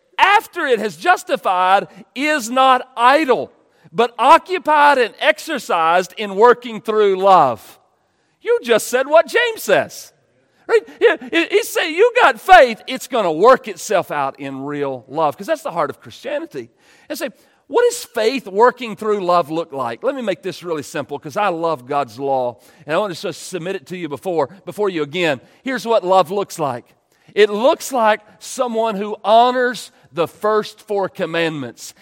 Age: 40-59